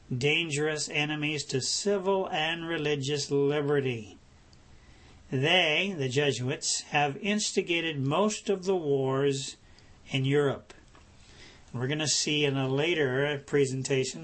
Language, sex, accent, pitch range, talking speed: English, male, American, 135-155 Hz, 110 wpm